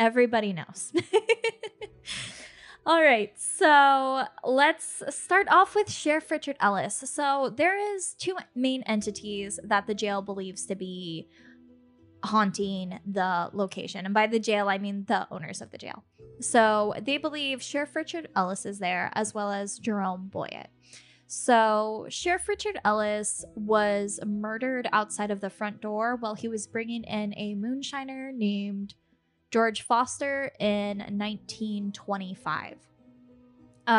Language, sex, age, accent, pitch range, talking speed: English, female, 10-29, American, 200-265 Hz, 130 wpm